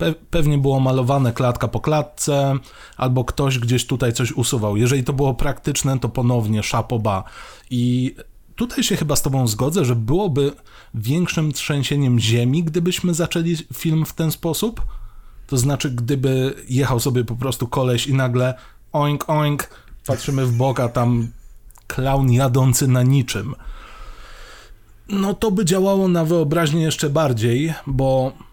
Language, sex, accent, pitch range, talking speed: Polish, male, native, 120-160 Hz, 140 wpm